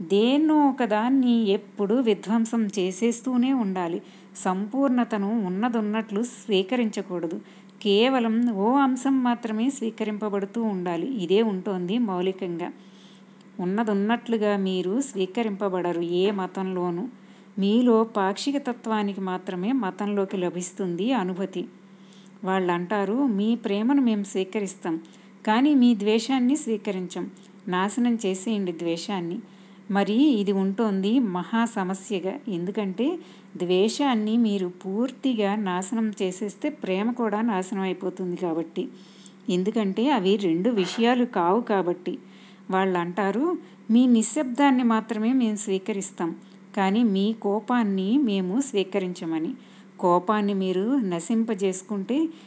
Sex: female